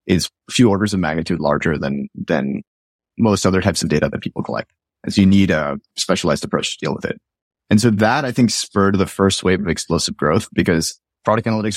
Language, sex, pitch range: English, male, 85-105 Hz